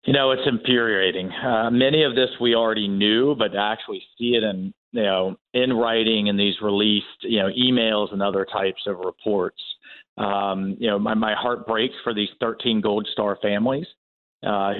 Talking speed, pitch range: 185 wpm, 105-125 Hz